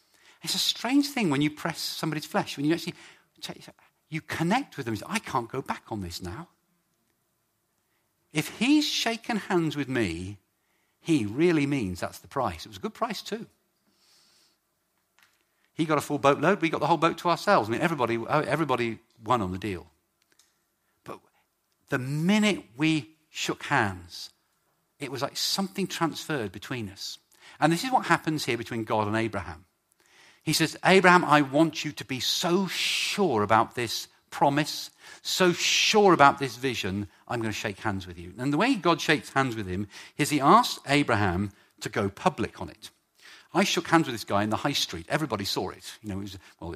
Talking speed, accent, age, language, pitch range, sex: 185 wpm, British, 50-69, English, 105-165 Hz, male